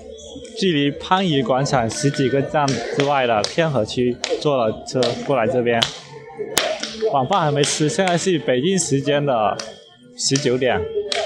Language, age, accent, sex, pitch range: Chinese, 20-39, native, male, 135-190 Hz